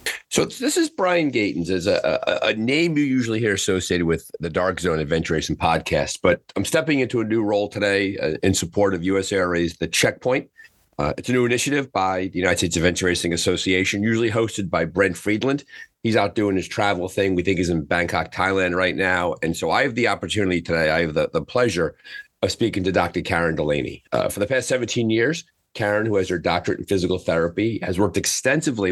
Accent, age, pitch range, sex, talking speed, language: American, 40-59, 85-110 Hz, male, 210 wpm, English